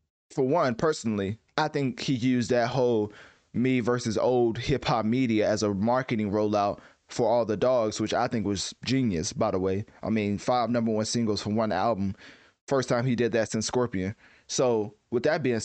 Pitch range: 110-140 Hz